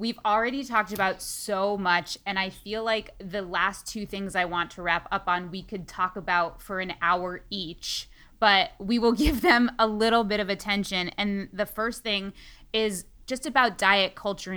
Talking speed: 195 wpm